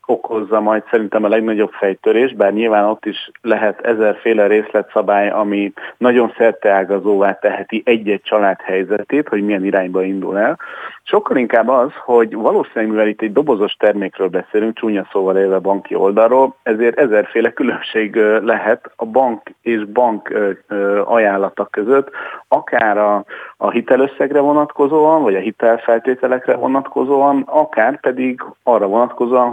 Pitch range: 100-125 Hz